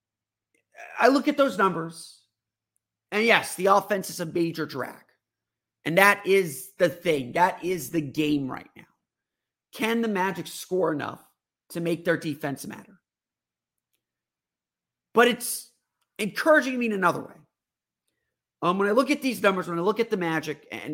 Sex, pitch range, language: male, 150-210 Hz, English